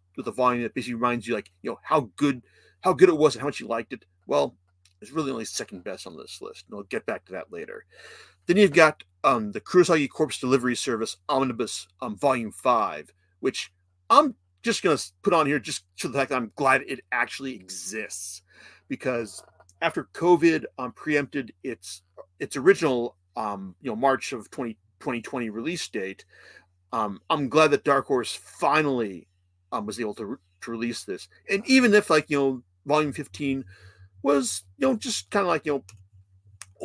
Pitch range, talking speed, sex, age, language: 95-150 Hz, 190 wpm, male, 40-59, English